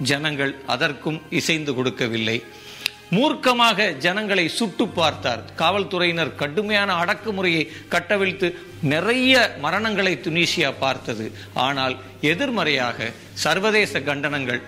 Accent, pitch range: native, 130-175 Hz